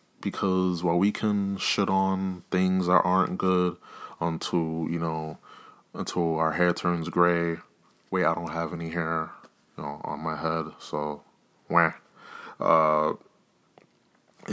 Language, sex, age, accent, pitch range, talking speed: English, male, 20-39, American, 80-90 Hz, 130 wpm